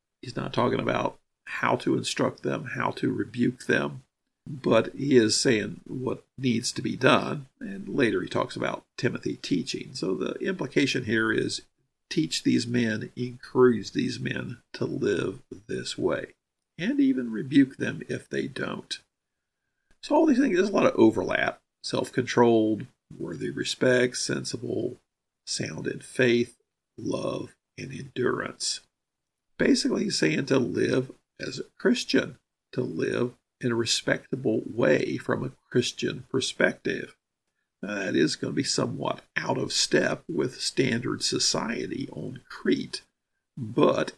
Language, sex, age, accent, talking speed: English, male, 50-69, American, 135 wpm